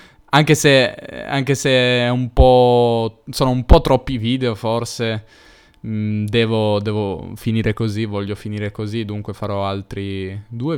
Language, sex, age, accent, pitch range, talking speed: Italian, male, 20-39, native, 105-125 Hz, 130 wpm